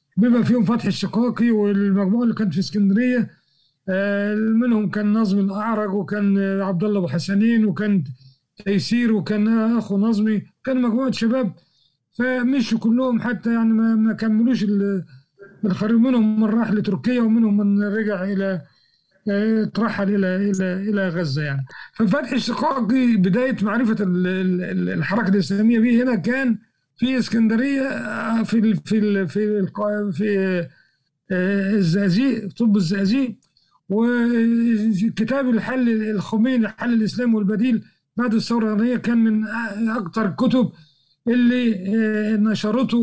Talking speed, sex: 115 wpm, male